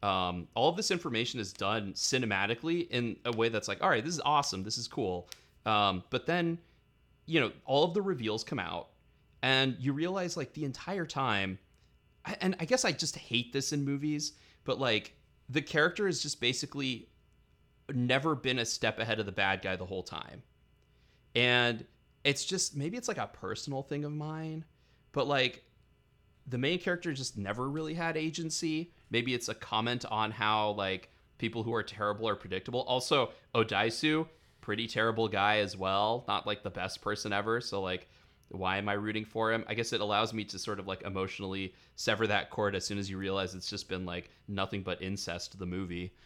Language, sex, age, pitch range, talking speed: English, male, 30-49, 95-135 Hz, 195 wpm